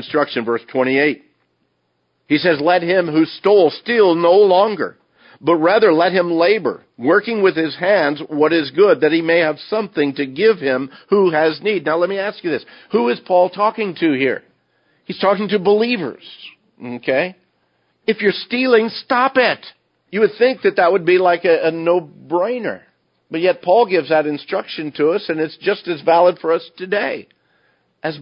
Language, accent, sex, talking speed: English, American, male, 185 wpm